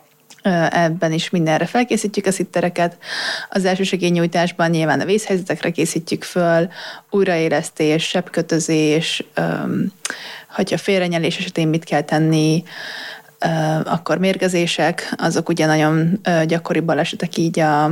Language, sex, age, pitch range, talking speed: Hungarian, female, 30-49, 160-185 Hz, 105 wpm